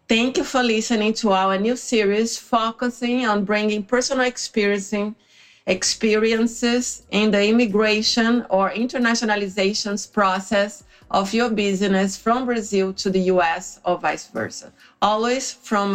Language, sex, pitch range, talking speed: Portuguese, female, 195-230 Hz, 120 wpm